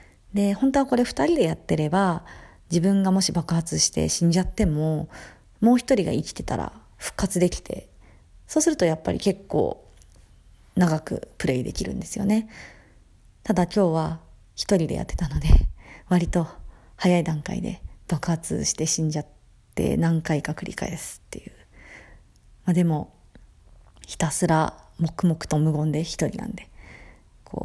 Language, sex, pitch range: Japanese, female, 145-185 Hz